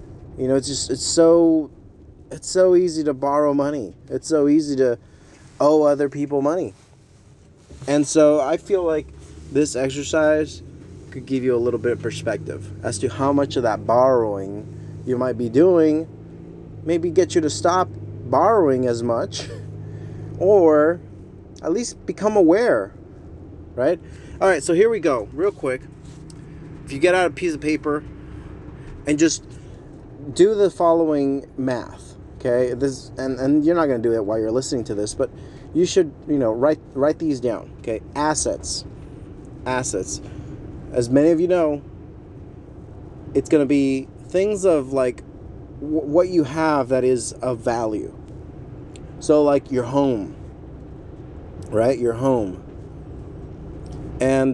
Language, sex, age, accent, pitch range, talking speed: English, male, 30-49, American, 120-155 Hz, 150 wpm